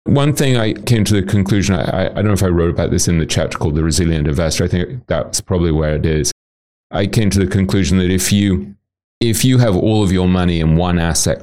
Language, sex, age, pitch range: English, male, 30-49, 80-105 Hz